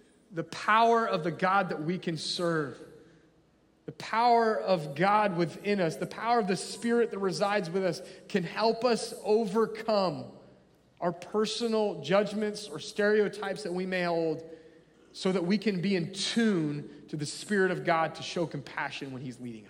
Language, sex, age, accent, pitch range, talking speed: English, male, 30-49, American, 180-215 Hz, 170 wpm